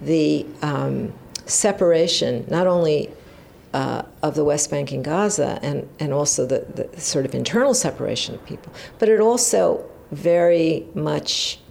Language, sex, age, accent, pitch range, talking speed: German, female, 50-69, American, 145-175 Hz, 145 wpm